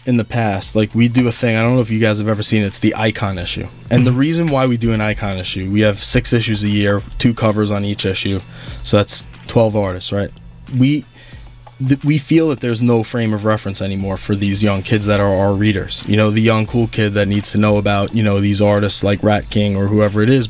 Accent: American